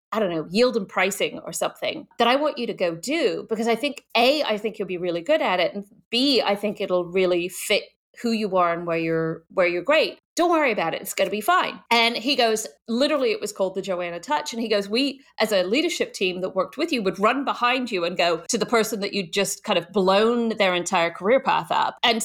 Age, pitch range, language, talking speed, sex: 30-49, 180-230 Hz, English, 255 wpm, female